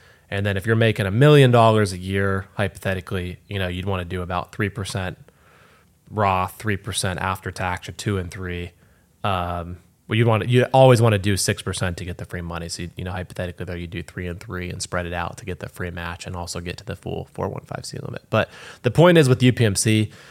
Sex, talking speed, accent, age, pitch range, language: male, 230 wpm, American, 20-39, 90-110 Hz, English